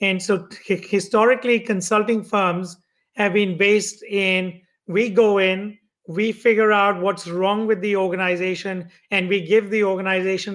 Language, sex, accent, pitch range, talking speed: English, male, Indian, 180-210 Hz, 140 wpm